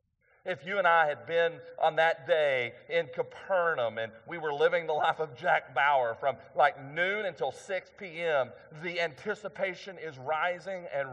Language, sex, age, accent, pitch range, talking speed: English, male, 40-59, American, 155-220 Hz, 165 wpm